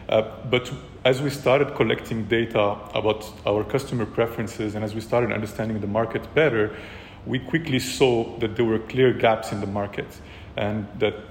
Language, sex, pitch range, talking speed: English, male, 105-120 Hz, 170 wpm